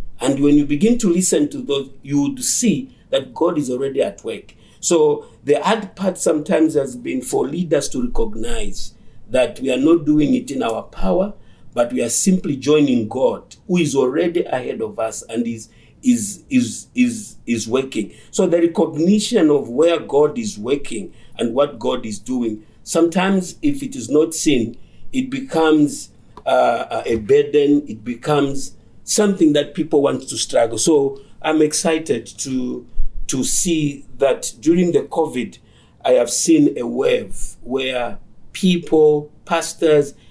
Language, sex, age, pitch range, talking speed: English, male, 50-69, 135-215 Hz, 160 wpm